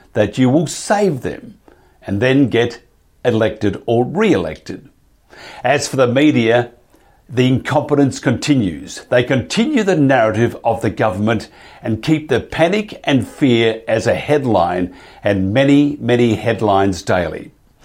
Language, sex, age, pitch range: English, male, 60-79, 115-140 Hz